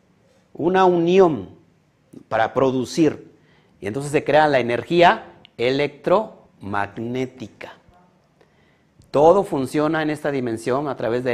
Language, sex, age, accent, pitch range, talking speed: Spanish, male, 50-69, Mexican, 125-170 Hz, 100 wpm